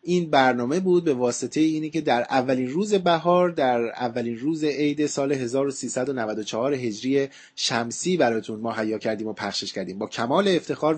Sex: male